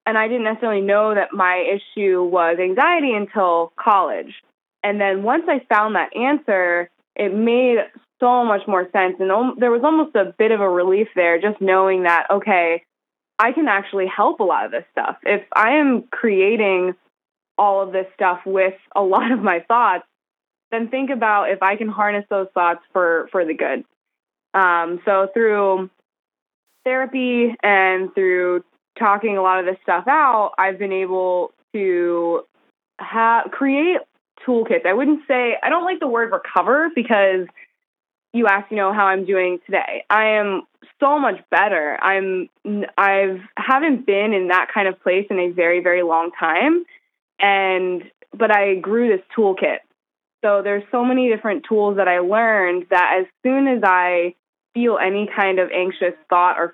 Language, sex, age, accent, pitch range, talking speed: English, female, 20-39, American, 185-230 Hz, 170 wpm